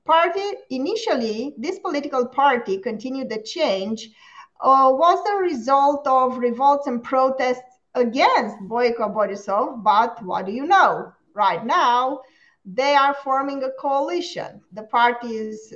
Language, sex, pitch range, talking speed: English, female, 220-290 Hz, 130 wpm